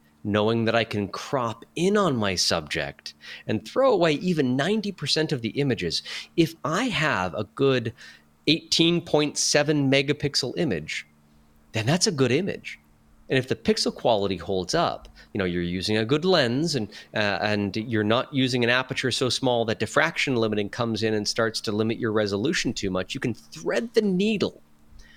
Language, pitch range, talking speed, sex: English, 105-150 Hz, 170 wpm, male